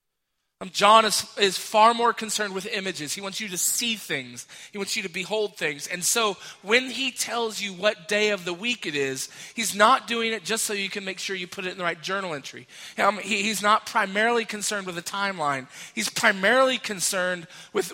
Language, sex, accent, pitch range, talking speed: English, male, American, 175-215 Hz, 205 wpm